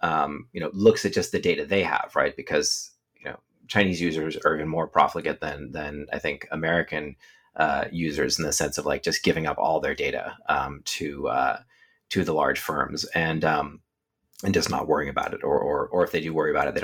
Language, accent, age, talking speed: English, American, 30-49, 225 wpm